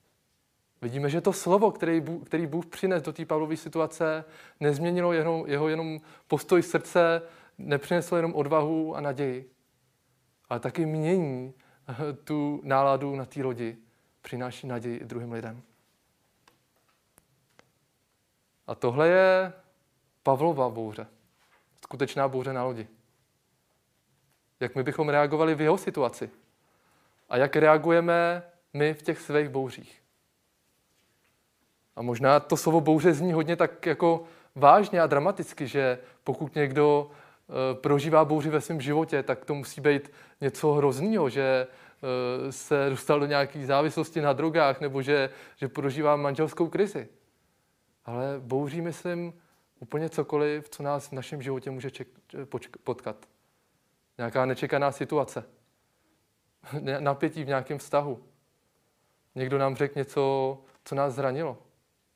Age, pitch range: 20-39, 135-160 Hz